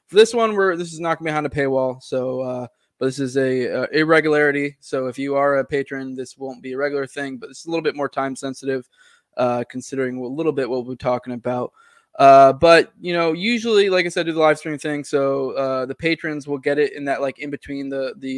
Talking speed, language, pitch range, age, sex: 250 wpm, English, 135-155 Hz, 20-39, male